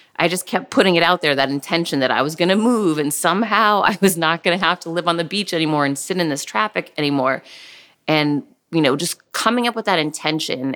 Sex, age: female, 30-49